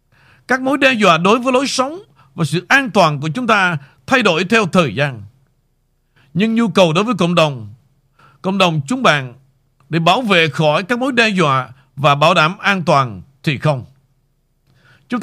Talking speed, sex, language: 185 wpm, male, Vietnamese